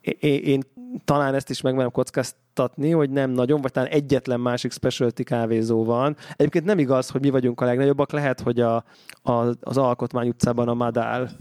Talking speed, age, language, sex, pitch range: 185 wpm, 20-39, Hungarian, male, 120-140 Hz